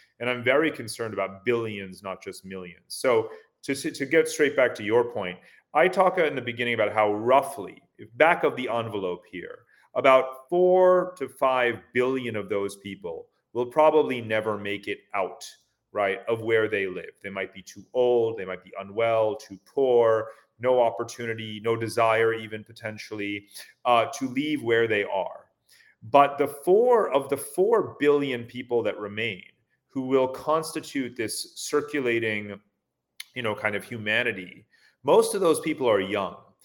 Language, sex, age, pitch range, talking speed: English, male, 30-49, 105-150 Hz, 160 wpm